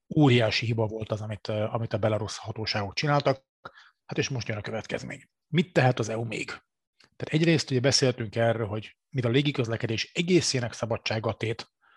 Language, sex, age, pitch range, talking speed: Hungarian, male, 30-49, 115-135 Hz, 165 wpm